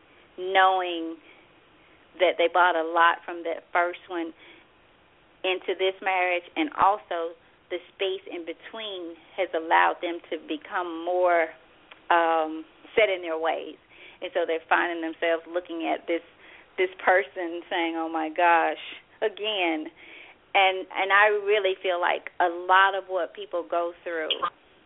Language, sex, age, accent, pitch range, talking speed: English, female, 30-49, American, 165-190 Hz, 140 wpm